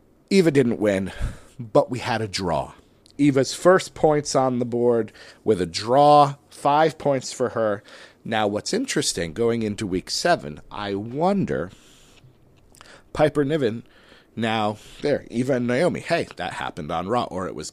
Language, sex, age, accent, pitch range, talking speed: English, male, 40-59, American, 105-140 Hz, 150 wpm